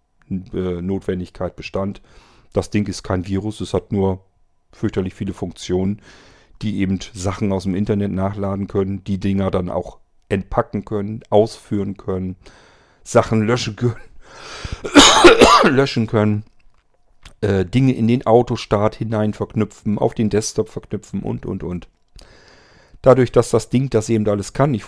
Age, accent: 40-59, German